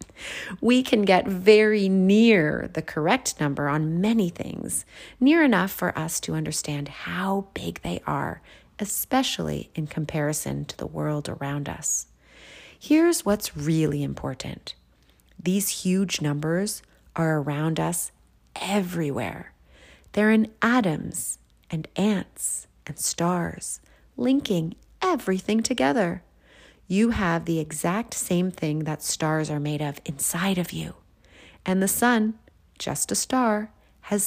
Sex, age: female, 30-49